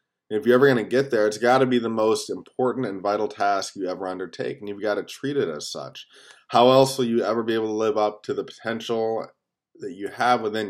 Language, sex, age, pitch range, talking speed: English, male, 20-39, 95-120 Hz, 250 wpm